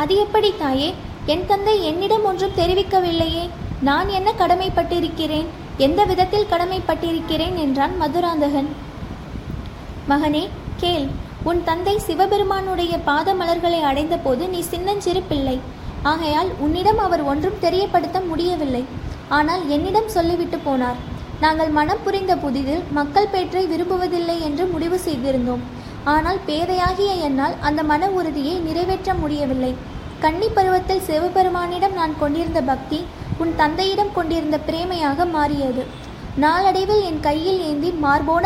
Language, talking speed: Tamil, 110 wpm